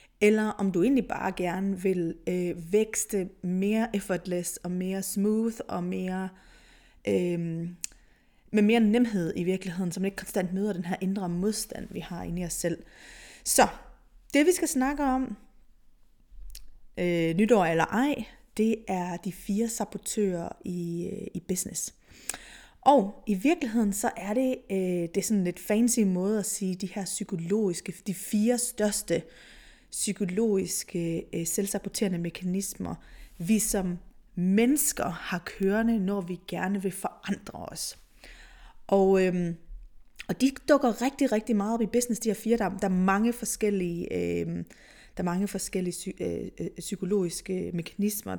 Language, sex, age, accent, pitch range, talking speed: Danish, female, 30-49, native, 185-220 Hz, 145 wpm